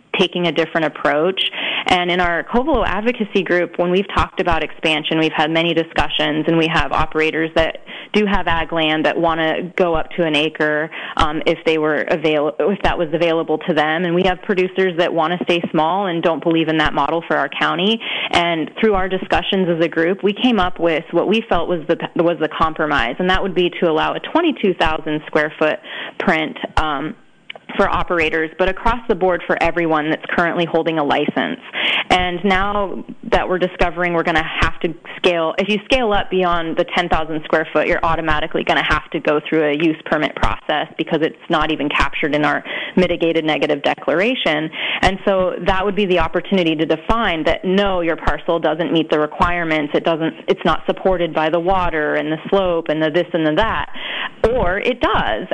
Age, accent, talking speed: 20-39, American, 205 wpm